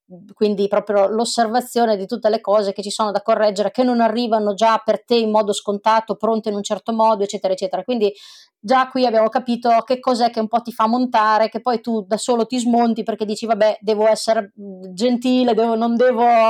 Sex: female